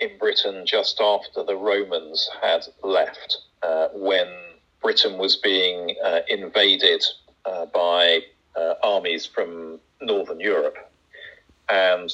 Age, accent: 40-59, British